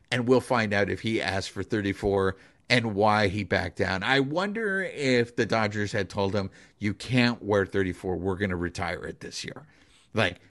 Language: English